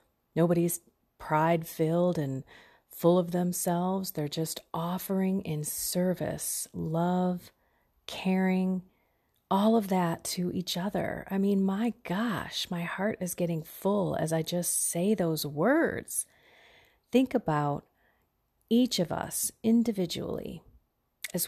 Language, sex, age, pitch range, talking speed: English, female, 40-59, 160-200 Hz, 115 wpm